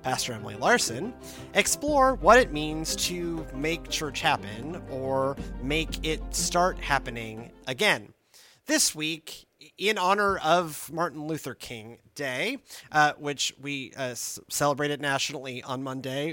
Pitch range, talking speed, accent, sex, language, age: 140-190 Hz, 130 wpm, American, male, English, 30-49